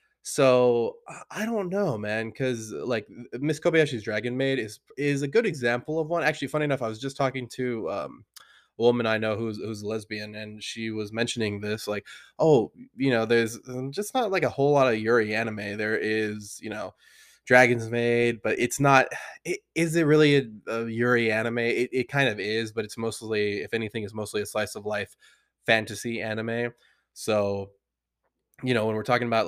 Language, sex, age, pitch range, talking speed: English, male, 20-39, 110-135 Hz, 195 wpm